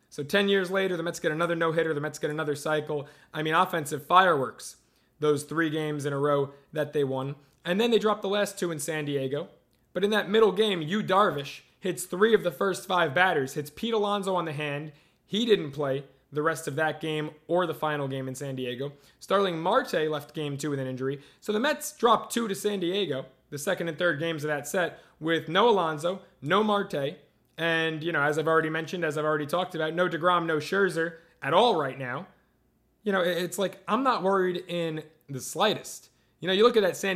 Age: 20-39